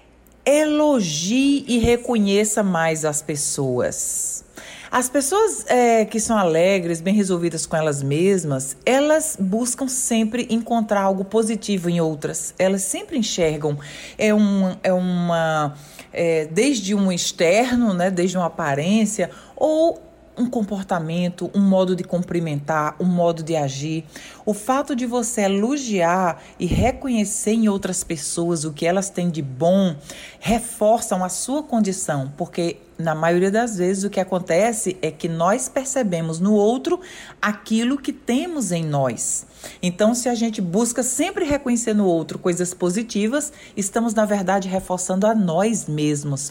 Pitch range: 170-230 Hz